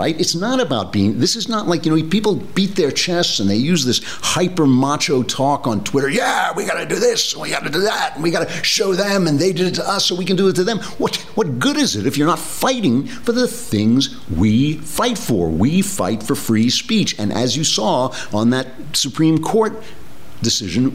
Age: 50-69